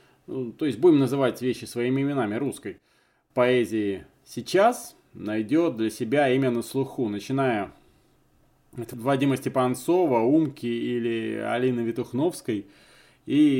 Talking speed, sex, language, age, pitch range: 110 wpm, male, Russian, 20-39, 110-135 Hz